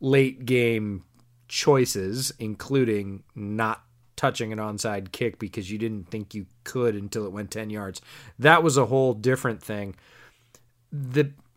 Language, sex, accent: English, male, American